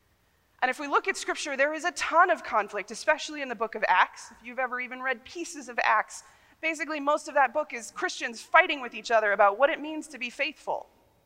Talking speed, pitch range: 235 wpm, 230-320 Hz